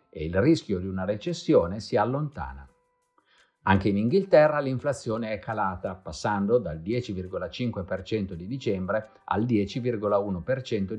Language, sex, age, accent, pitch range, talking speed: Italian, male, 50-69, native, 95-140 Hz, 115 wpm